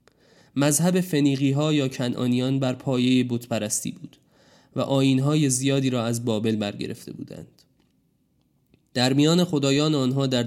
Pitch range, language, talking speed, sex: 120-140 Hz, Persian, 130 wpm, male